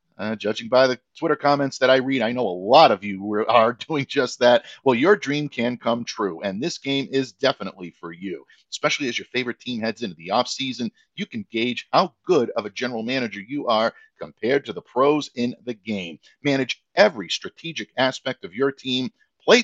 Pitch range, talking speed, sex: 115-150 Hz, 205 wpm, male